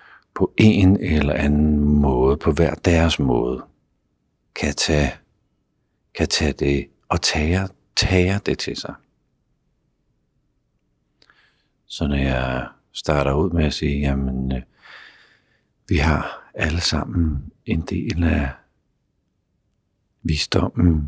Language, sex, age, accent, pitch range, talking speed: Danish, male, 60-79, native, 70-85 Hz, 100 wpm